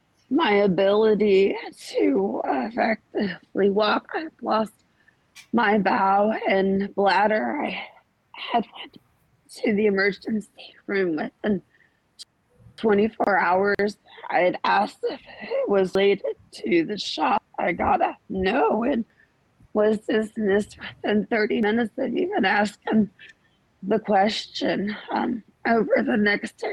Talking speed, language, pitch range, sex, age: 110 wpm, English, 205-255 Hz, female, 30-49